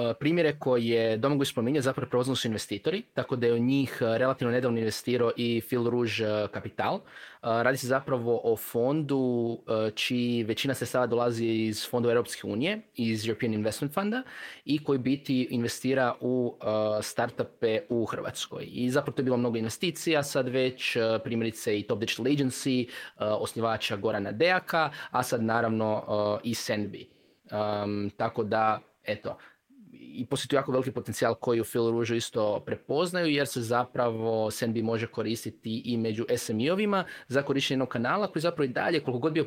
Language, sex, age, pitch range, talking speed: Croatian, male, 20-39, 115-135 Hz, 155 wpm